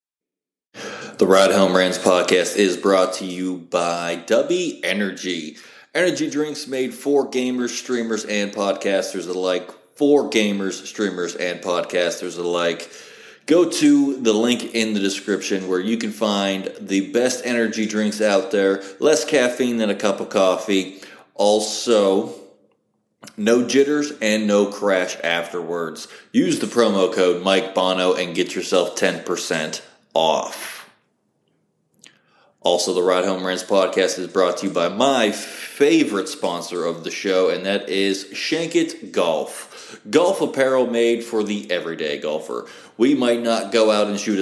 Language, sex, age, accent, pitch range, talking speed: English, male, 30-49, American, 95-120 Hz, 140 wpm